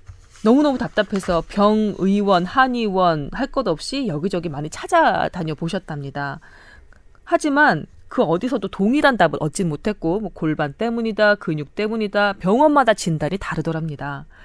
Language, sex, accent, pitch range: Korean, female, native, 160-225 Hz